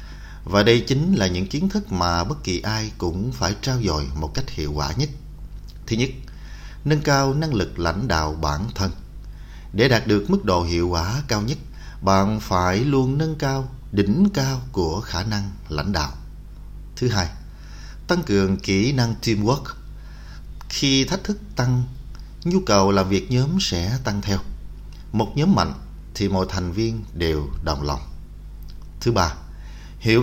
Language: Vietnamese